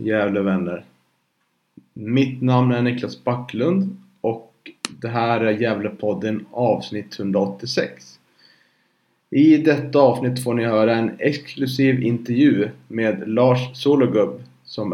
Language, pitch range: Swedish, 110-135 Hz